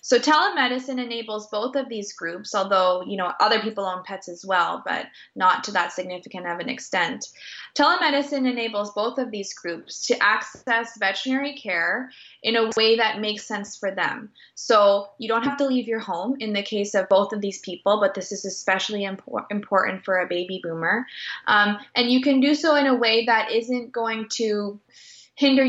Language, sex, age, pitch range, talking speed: English, female, 20-39, 190-235 Hz, 190 wpm